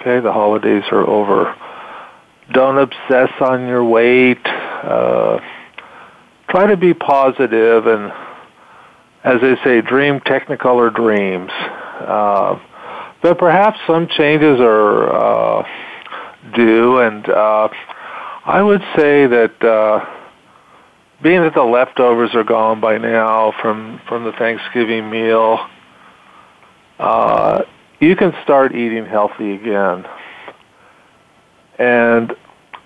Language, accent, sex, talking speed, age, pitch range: English, American, male, 110 wpm, 50-69, 110-135 Hz